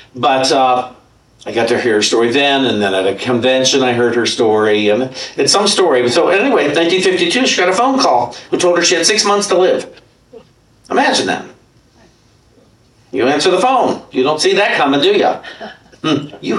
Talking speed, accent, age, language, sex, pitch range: 195 wpm, American, 60-79, English, male, 125-175 Hz